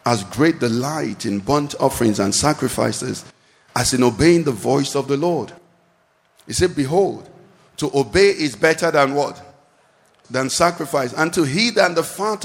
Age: 50-69